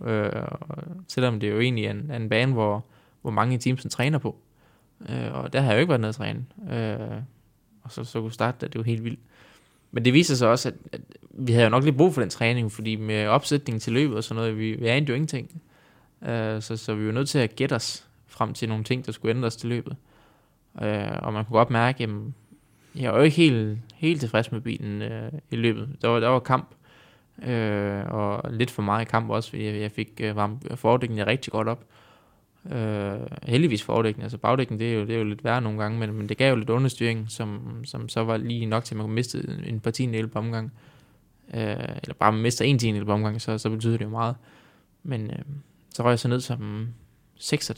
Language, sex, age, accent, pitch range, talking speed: Danish, male, 20-39, native, 110-130 Hz, 235 wpm